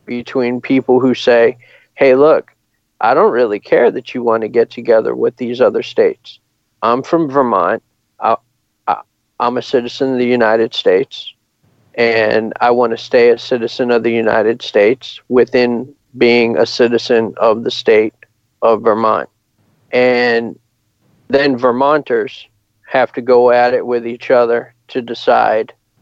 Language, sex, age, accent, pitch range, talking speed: English, male, 40-59, American, 120-145 Hz, 145 wpm